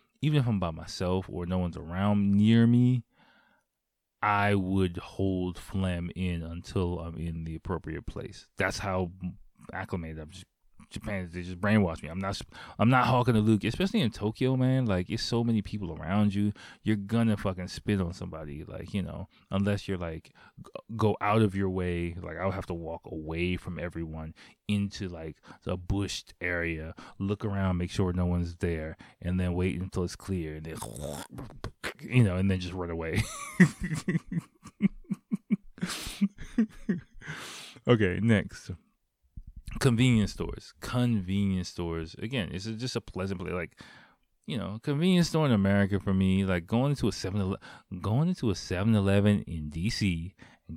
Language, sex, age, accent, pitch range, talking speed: English, male, 20-39, American, 90-115 Hz, 160 wpm